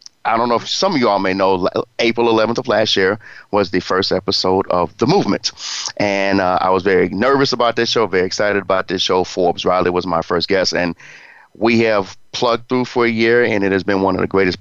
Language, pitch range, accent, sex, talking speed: English, 95-120 Hz, American, male, 235 wpm